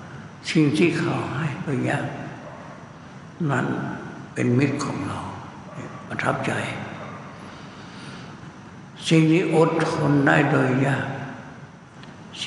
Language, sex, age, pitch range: Thai, male, 60-79, 125-150 Hz